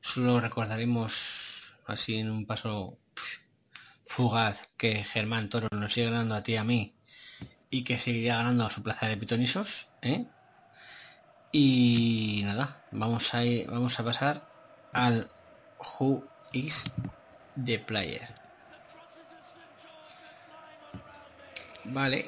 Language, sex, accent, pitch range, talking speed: Spanish, male, Spanish, 105-130 Hz, 115 wpm